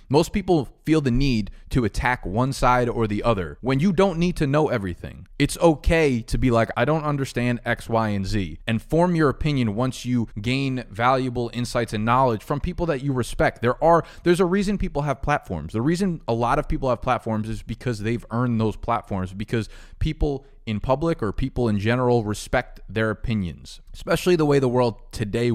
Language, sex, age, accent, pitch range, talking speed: English, male, 20-39, American, 110-135 Hz, 200 wpm